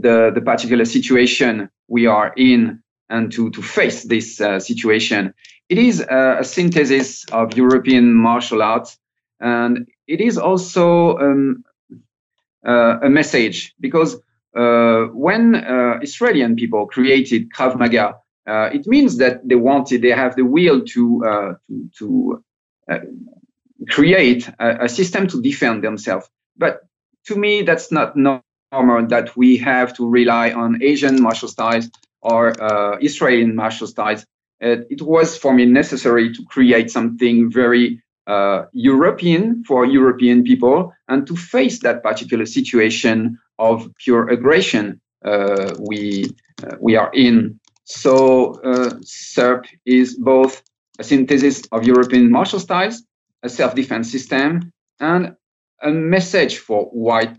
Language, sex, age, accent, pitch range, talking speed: English, male, 40-59, French, 115-155 Hz, 135 wpm